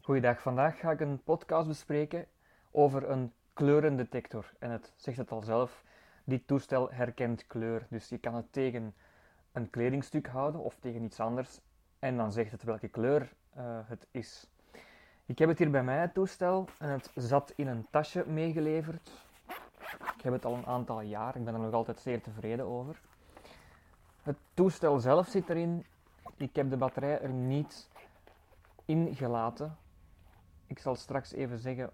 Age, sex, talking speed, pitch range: 20-39, male, 165 wpm, 115-150 Hz